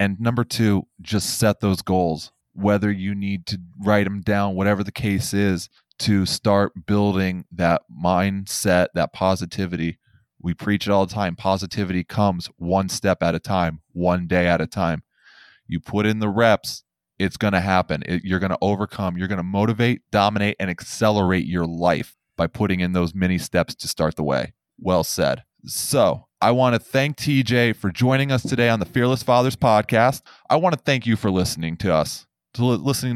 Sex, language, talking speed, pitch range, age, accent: male, English, 190 wpm, 95-115 Hz, 20-39, American